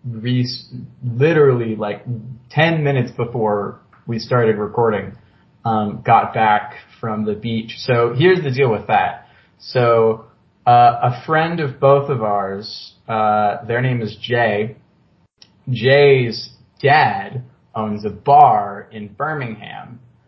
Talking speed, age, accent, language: 120 wpm, 20-39, American, English